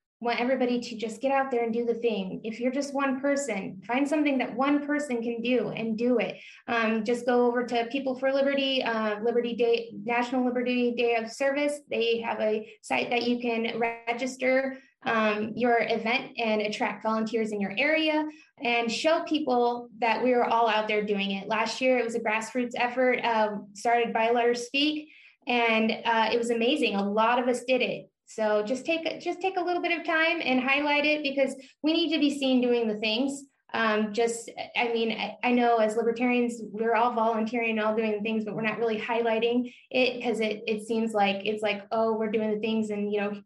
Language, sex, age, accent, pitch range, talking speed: English, female, 20-39, American, 225-265 Hz, 210 wpm